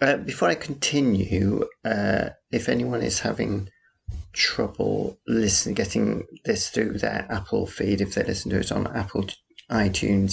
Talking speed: 145 wpm